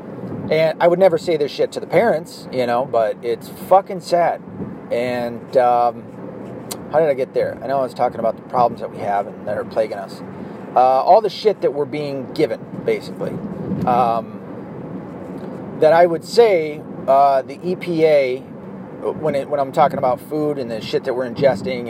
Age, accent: 30-49, American